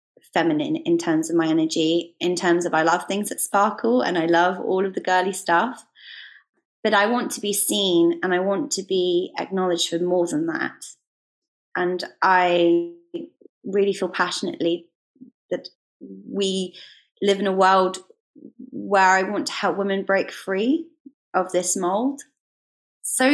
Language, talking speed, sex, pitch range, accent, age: English, 155 wpm, female, 180-255 Hz, British, 20-39